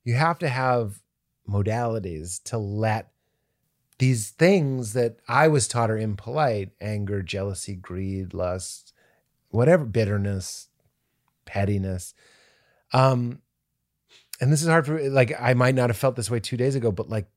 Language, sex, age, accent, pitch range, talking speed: English, male, 30-49, American, 110-145 Hz, 140 wpm